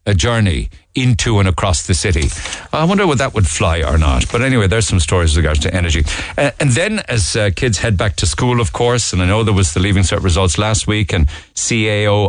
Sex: male